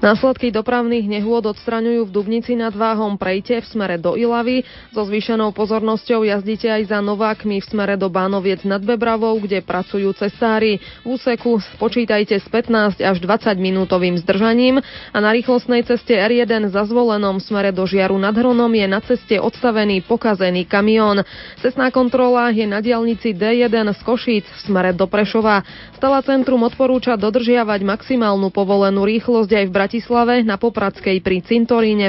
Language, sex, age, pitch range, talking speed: Slovak, female, 20-39, 195-240 Hz, 155 wpm